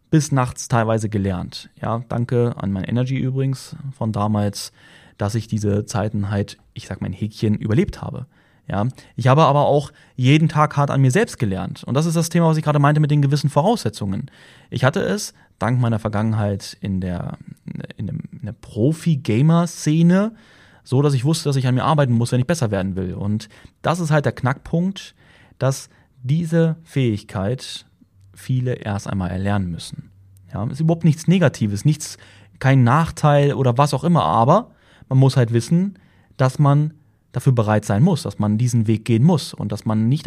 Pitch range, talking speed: 105-150 Hz, 180 wpm